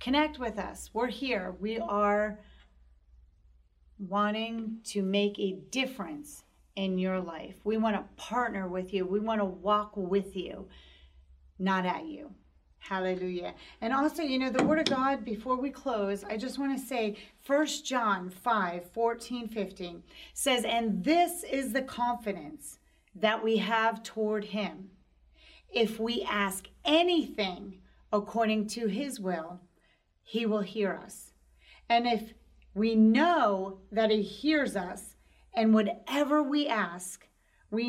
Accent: American